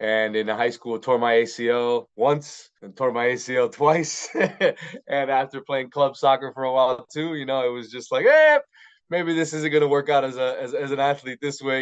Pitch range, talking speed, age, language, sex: 120-145 Hz, 225 wpm, 20-39, English, male